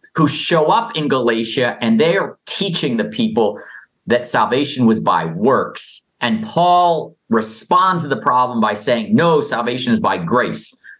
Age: 50-69